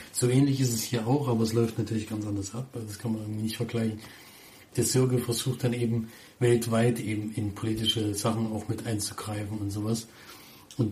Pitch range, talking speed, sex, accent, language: 110-125 Hz, 185 wpm, male, German, German